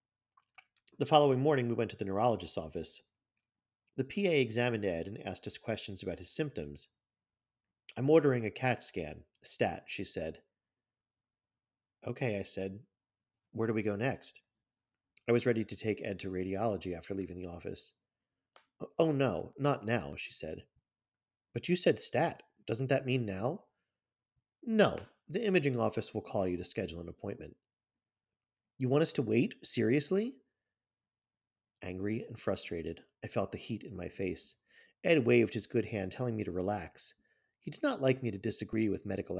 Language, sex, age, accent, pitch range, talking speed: English, male, 40-59, American, 95-125 Hz, 165 wpm